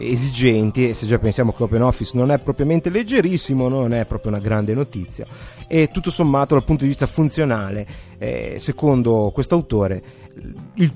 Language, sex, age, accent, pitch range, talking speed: Italian, male, 30-49, native, 110-165 Hz, 165 wpm